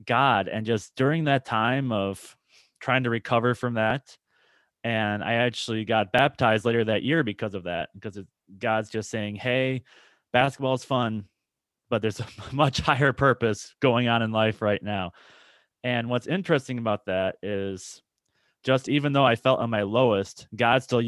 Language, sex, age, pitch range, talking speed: English, male, 20-39, 110-130 Hz, 170 wpm